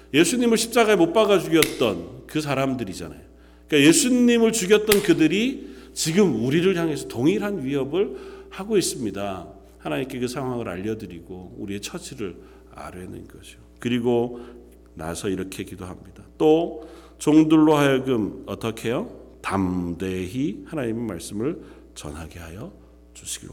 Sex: male